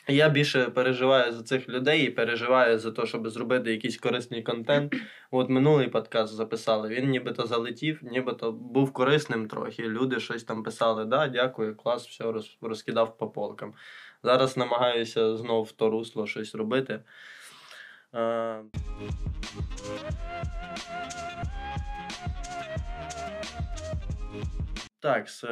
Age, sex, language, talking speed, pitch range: 20-39, male, Ukrainian, 110 wpm, 115-130 Hz